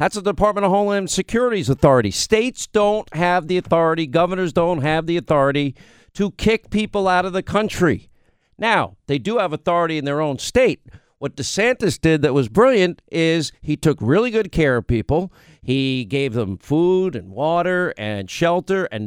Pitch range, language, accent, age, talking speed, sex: 140-190 Hz, English, American, 50-69, 175 wpm, male